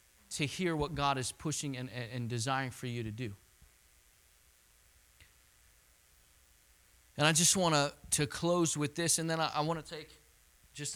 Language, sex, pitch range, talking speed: English, male, 100-150 Hz, 160 wpm